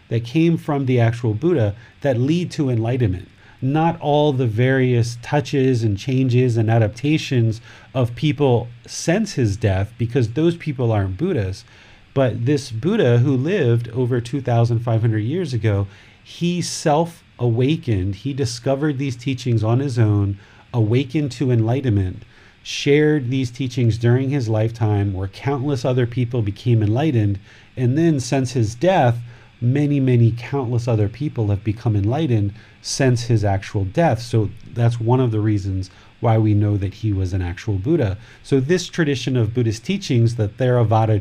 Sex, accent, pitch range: male, American, 110-140 Hz